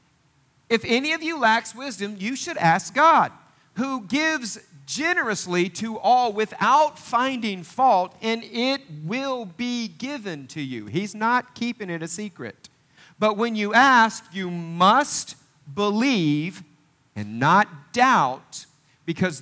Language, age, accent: English, 40-59, American